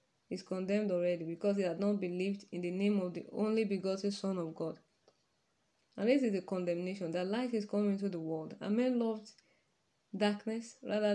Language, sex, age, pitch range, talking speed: English, female, 20-39, 180-215 Hz, 190 wpm